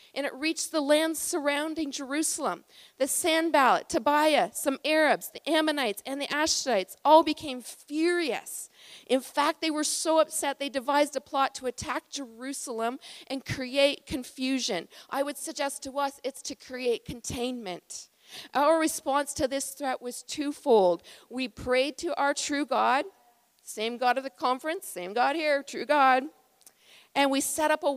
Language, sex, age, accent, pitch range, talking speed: English, female, 40-59, American, 255-295 Hz, 155 wpm